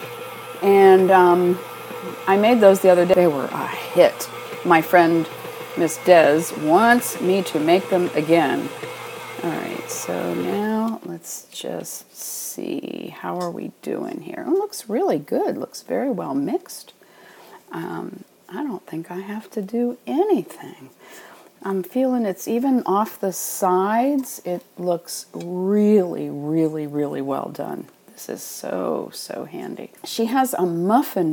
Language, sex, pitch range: English, female, 160-215 Hz